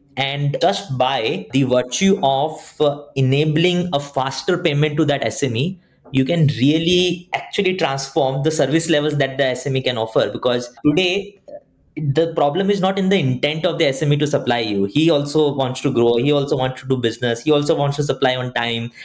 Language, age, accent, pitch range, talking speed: English, 20-39, Indian, 125-155 Hz, 185 wpm